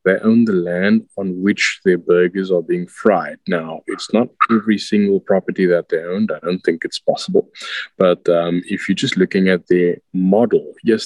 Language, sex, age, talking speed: English, male, 20-39, 190 wpm